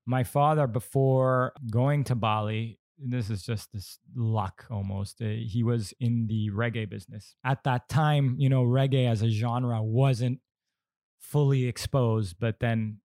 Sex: male